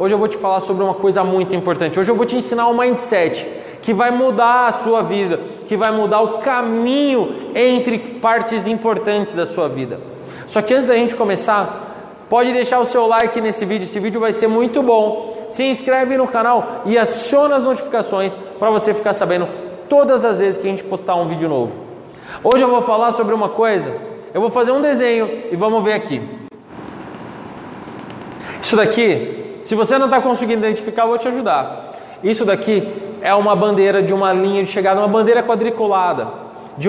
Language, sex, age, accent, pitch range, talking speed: Portuguese, male, 20-39, Brazilian, 180-230 Hz, 190 wpm